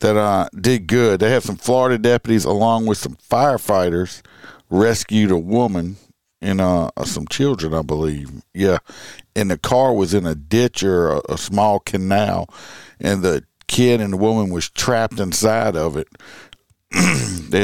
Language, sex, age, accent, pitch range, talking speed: English, male, 50-69, American, 95-115 Hz, 160 wpm